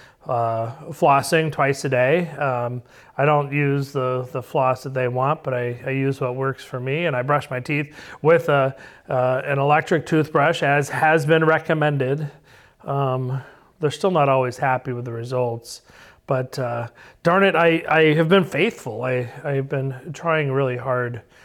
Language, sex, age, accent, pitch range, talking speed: English, male, 40-59, American, 125-150 Hz, 175 wpm